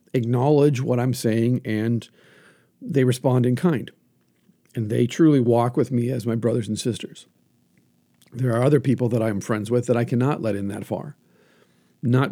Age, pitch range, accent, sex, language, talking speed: 50-69, 110-135 Hz, American, male, English, 180 wpm